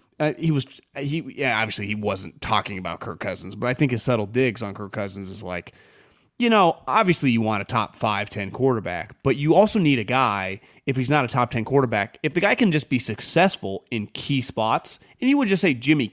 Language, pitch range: English, 110-150 Hz